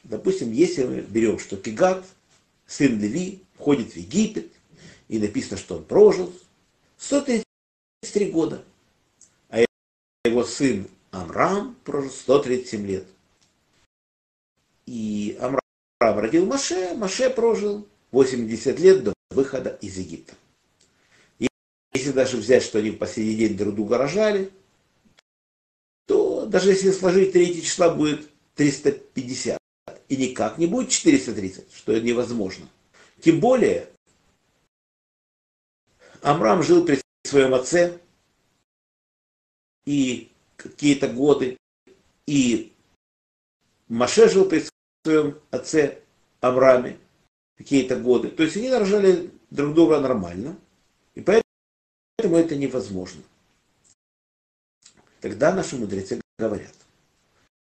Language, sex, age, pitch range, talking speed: Russian, male, 50-69, 115-190 Hz, 105 wpm